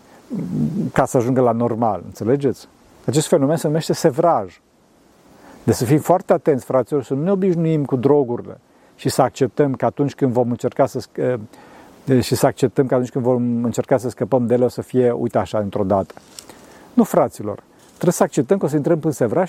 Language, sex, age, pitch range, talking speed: Romanian, male, 50-69, 125-165 Hz, 195 wpm